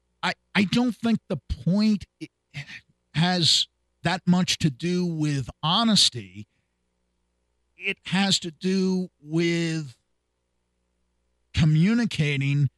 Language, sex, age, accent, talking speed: English, male, 50-69, American, 85 wpm